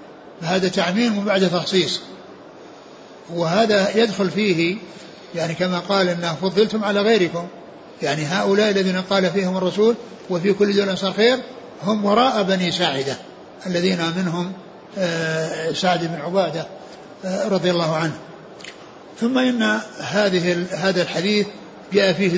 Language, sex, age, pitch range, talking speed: Arabic, male, 60-79, 180-210 Hz, 120 wpm